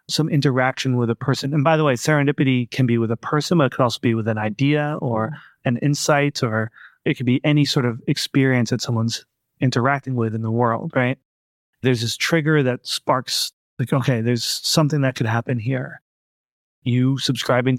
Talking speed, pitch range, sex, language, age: 190 wpm, 120-145 Hz, male, English, 30-49